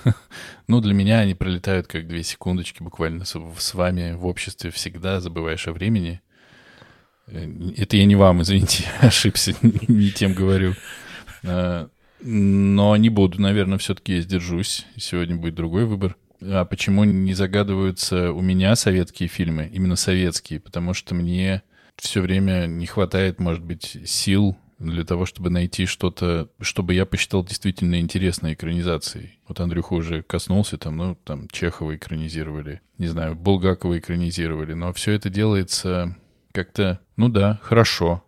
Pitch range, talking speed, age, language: 85-100 Hz, 140 wpm, 20-39, Russian